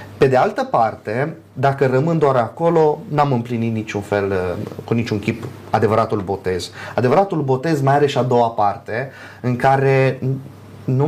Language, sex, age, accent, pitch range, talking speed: Romanian, male, 20-39, native, 110-145 Hz, 150 wpm